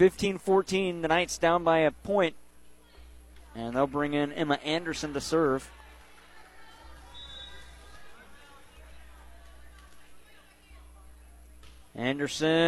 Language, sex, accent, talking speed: English, male, American, 70 wpm